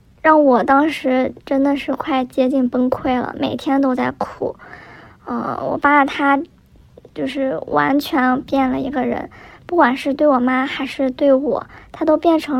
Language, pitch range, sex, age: Chinese, 255-285 Hz, male, 20-39